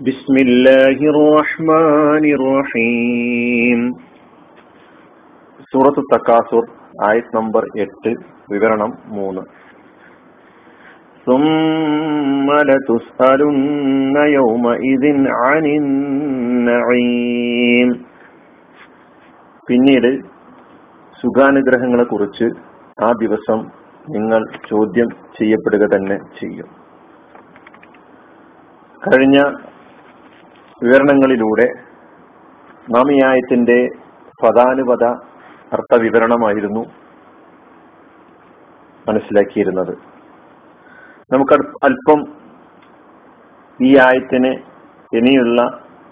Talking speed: 35 wpm